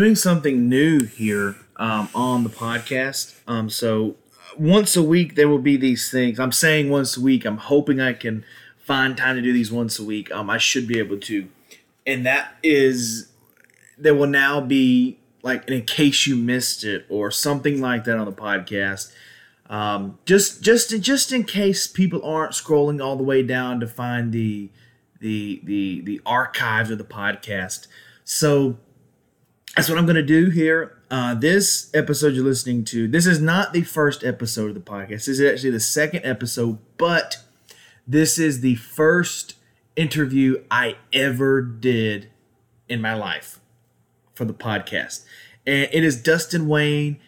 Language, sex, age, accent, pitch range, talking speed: English, male, 30-49, American, 115-150 Hz, 170 wpm